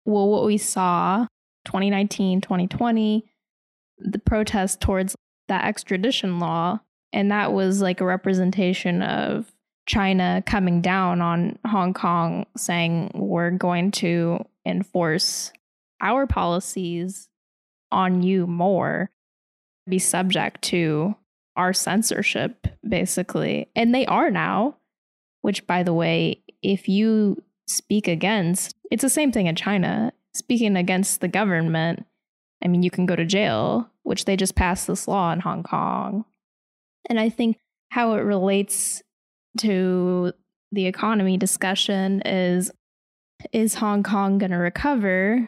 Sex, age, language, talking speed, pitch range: female, 10-29, English, 125 wpm, 175-205 Hz